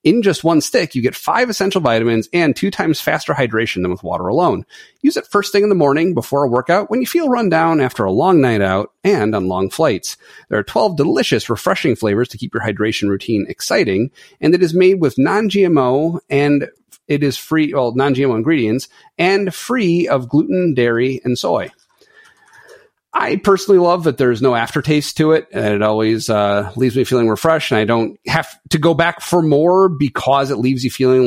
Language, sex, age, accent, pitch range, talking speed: English, male, 40-59, American, 110-160 Hz, 205 wpm